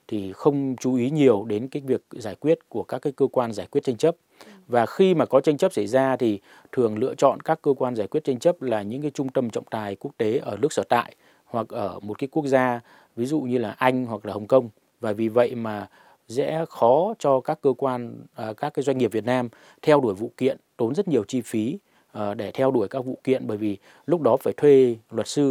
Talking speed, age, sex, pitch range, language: 245 wpm, 20-39, male, 110-135 Hz, Vietnamese